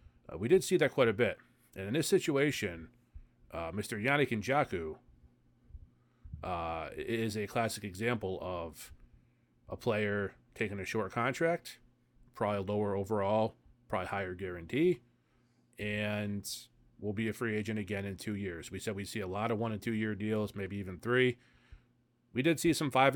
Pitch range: 95-120 Hz